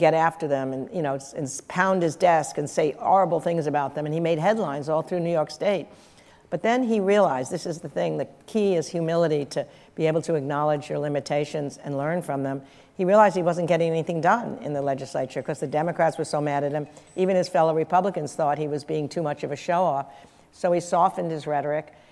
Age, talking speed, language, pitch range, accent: 60-79, 230 wpm, English, 150-175 Hz, American